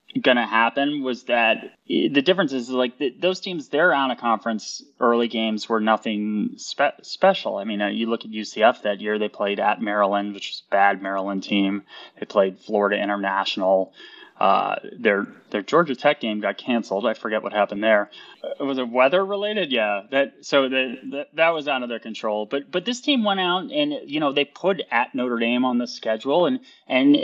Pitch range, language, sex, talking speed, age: 105-145 Hz, English, male, 200 wpm, 20-39